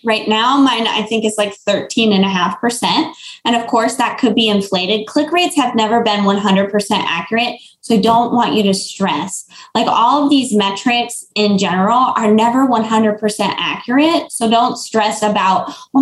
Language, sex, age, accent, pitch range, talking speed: English, female, 20-39, American, 205-255 Hz, 170 wpm